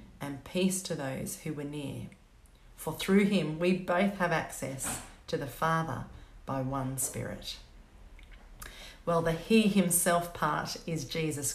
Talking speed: 140 wpm